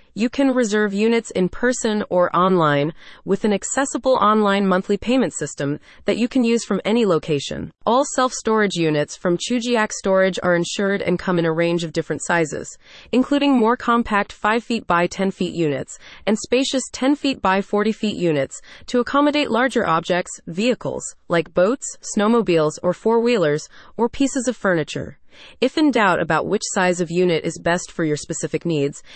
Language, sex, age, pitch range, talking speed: English, female, 30-49, 170-235 Hz, 175 wpm